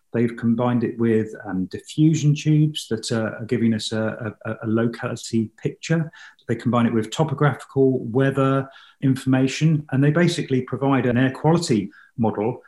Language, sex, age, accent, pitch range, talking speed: English, male, 40-59, British, 115-145 Hz, 145 wpm